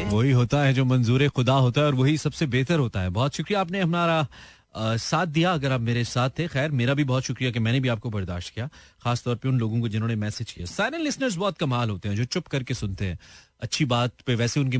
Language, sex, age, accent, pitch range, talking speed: Hindi, male, 30-49, native, 110-165 Hz, 240 wpm